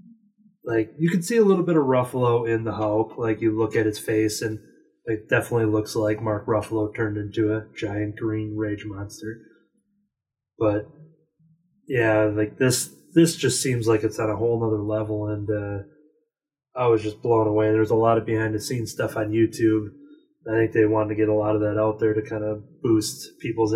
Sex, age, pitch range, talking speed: male, 20-39, 110-130 Hz, 195 wpm